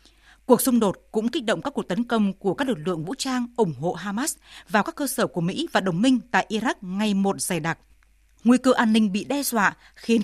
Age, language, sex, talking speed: 20-39, Vietnamese, female, 245 wpm